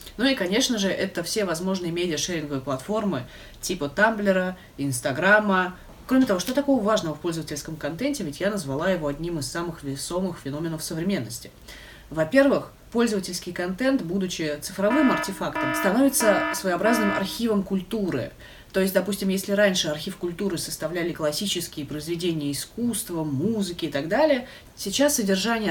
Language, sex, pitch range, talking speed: Russian, female, 160-205 Hz, 135 wpm